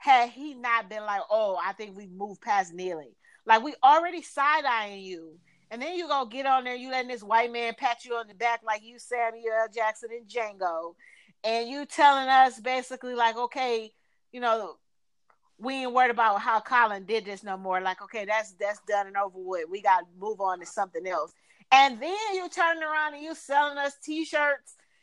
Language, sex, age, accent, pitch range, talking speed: English, female, 40-59, American, 215-300 Hz, 200 wpm